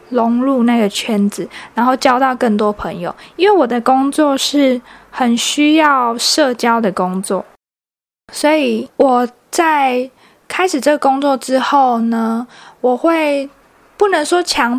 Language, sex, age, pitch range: Chinese, female, 20-39, 235-290 Hz